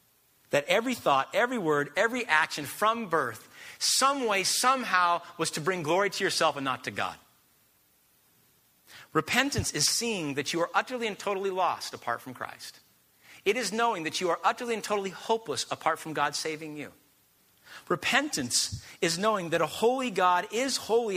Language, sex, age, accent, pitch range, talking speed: English, male, 50-69, American, 170-260 Hz, 165 wpm